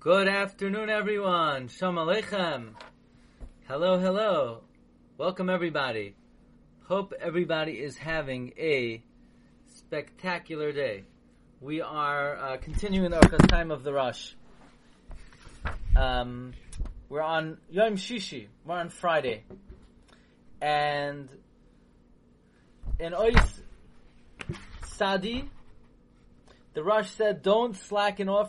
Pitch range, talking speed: 145-210 Hz, 90 wpm